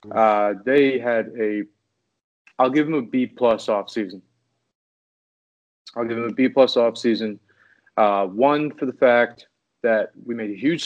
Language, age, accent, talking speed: English, 30-49, American, 165 wpm